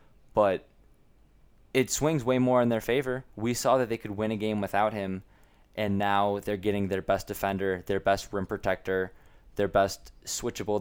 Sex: male